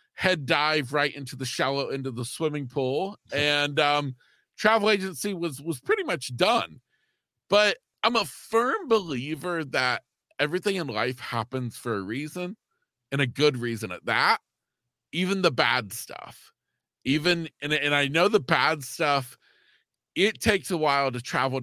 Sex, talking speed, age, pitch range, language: male, 160 wpm, 40-59, 130-180 Hz, English